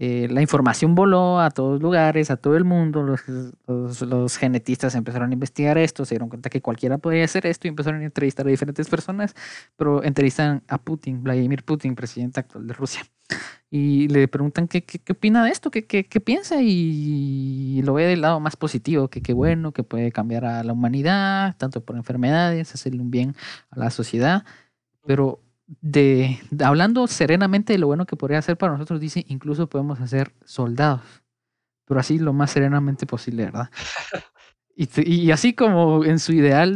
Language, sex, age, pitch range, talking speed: Spanish, male, 20-39, 125-160 Hz, 190 wpm